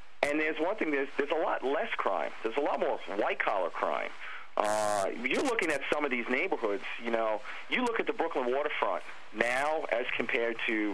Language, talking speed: English, 195 wpm